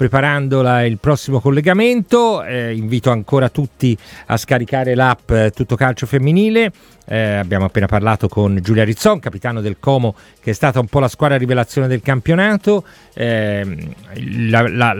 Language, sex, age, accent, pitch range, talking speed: Italian, male, 40-59, native, 120-160 Hz, 140 wpm